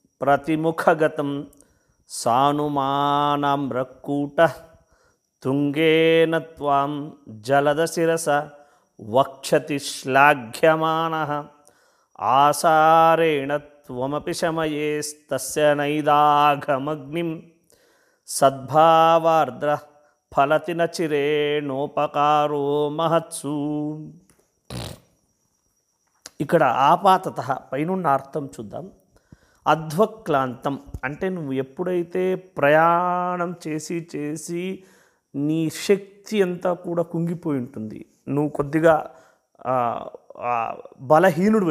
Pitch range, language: 145-170 Hz, Telugu